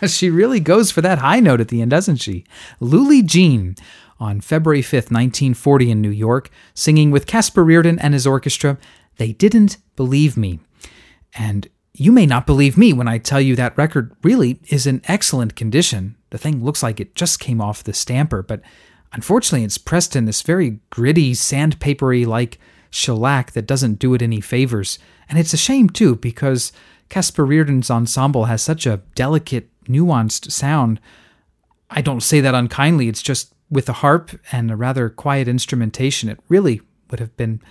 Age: 30-49